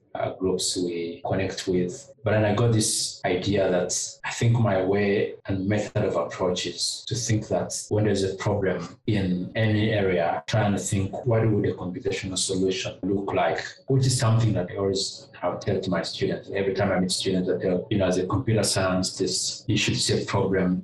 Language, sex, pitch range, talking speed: English, male, 95-110 Hz, 200 wpm